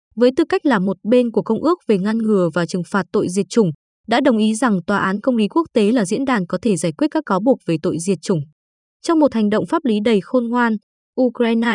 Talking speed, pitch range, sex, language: 265 wpm, 190-245 Hz, female, Vietnamese